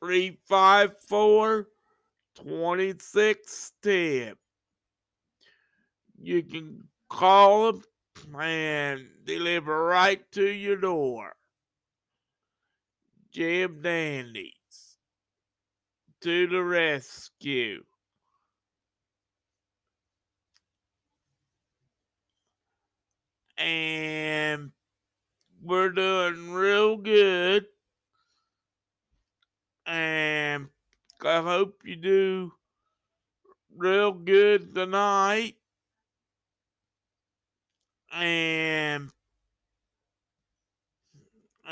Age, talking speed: 60-79, 50 wpm